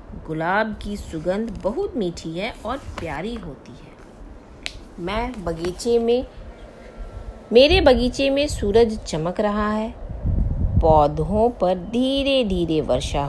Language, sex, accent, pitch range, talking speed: Hindi, female, native, 165-240 Hz, 115 wpm